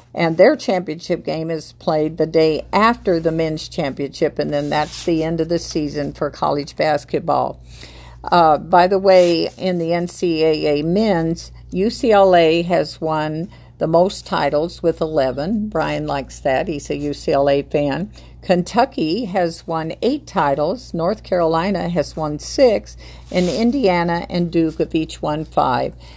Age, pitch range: 50-69, 155-185 Hz